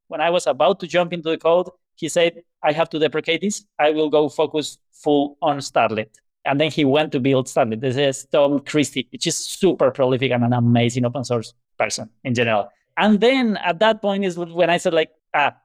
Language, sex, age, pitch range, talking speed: English, male, 30-49, 135-175 Hz, 220 wpm